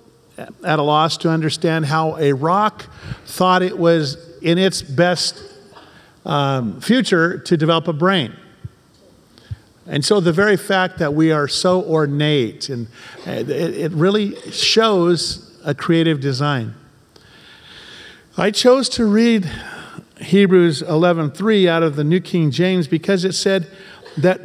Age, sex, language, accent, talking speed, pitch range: 50-69, male, English, American, 135 wpm, 150-185 Hz